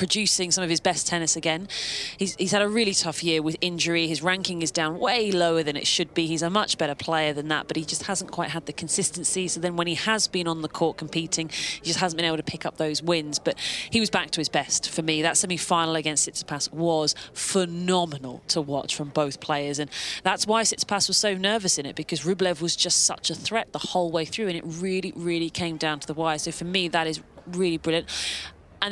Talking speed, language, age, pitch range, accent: 245 wpm, English, 30-49, 160-195 Hz, British